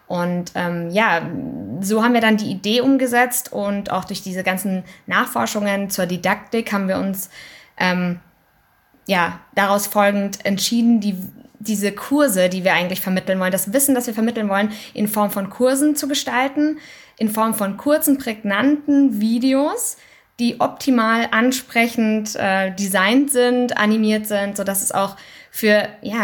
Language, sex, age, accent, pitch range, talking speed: German, female, 20-39, German, 195-235 Hz, 145 wpm